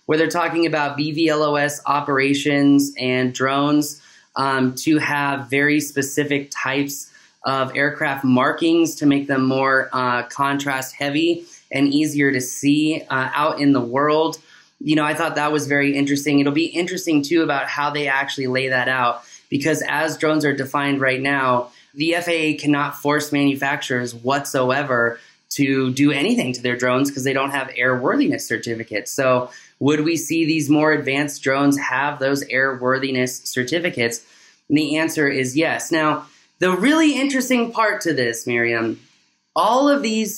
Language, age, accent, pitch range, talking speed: English, 20-39, American, 130-155 Hz, 155 wpm